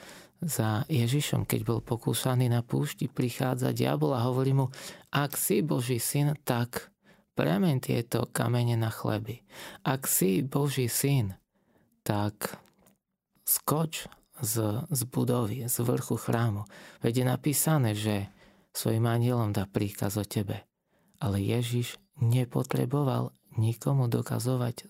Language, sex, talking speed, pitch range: Slovak, male, 120 wpm, 115-145 Hz